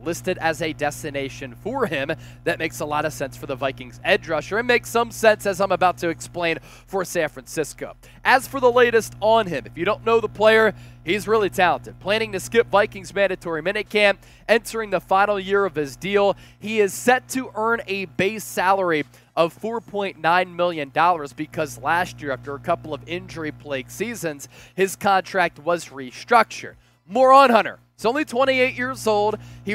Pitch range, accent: 150-210 Hz, American